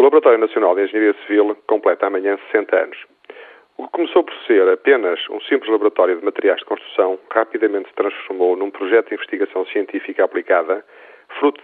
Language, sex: Portuguese, male